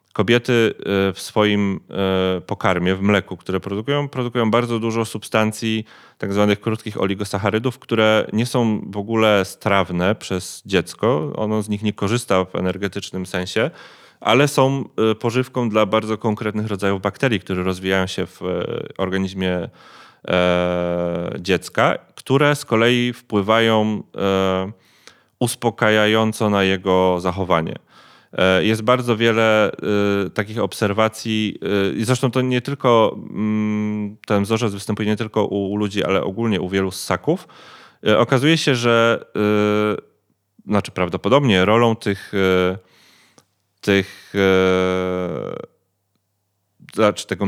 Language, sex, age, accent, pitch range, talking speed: Polish, male, 30-49, native, 95-110 Hz, 100 wpm